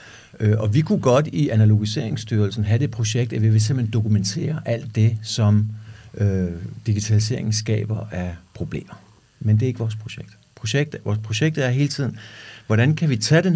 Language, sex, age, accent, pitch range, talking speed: Danish, male, 60-79, native, 110-140 Hz, 170 wpm